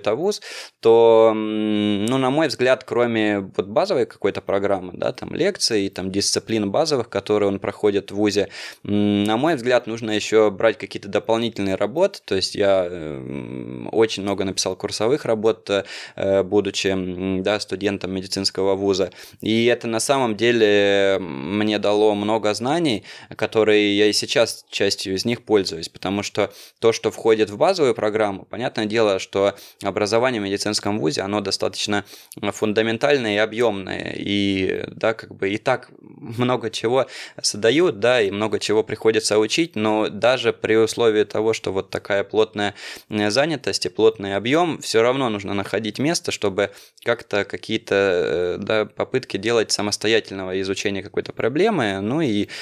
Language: Russian